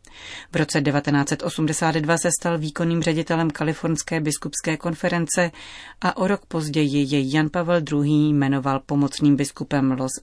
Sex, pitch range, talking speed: female, 145-170 Hz, 130 wpm